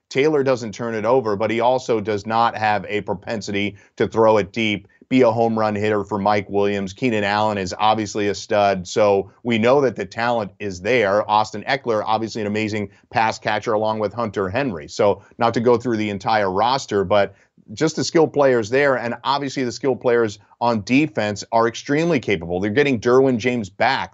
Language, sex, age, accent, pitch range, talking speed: English, male, 40-59, American, 100-120 Hz, 195 wpm